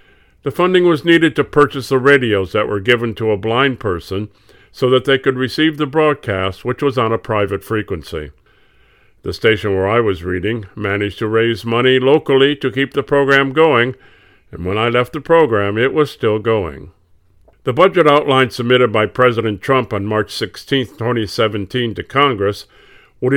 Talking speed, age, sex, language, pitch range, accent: 175 wpm, 50-69, male, English, 105-135 Hz, American